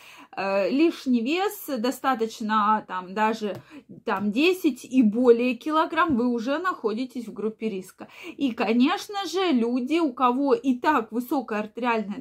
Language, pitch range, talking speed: Russian, 225-300 Hz, 130 wpm